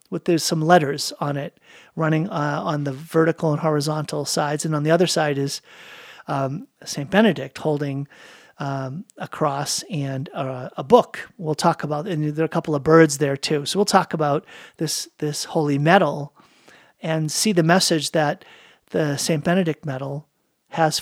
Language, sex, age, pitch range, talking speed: English, male, 40-59, 150-180 Hz, 175 wpm